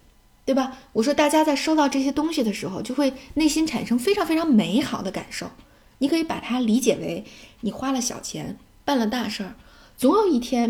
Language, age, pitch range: Chinese, 10-29, 210-270 Hz